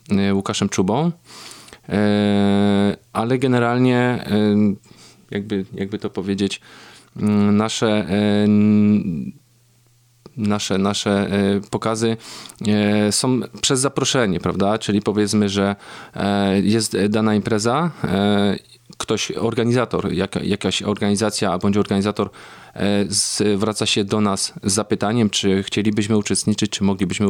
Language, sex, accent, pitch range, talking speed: Polish, male, native, 100-115 Hz, 100 wpm